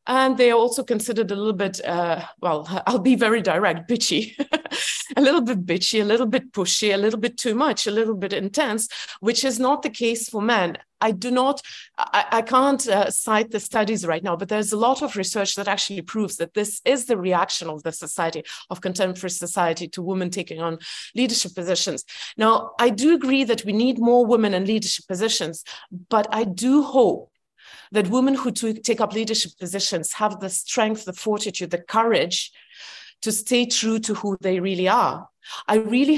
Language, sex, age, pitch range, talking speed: English, female, 30-49, 185-240 Hz, 195 wpm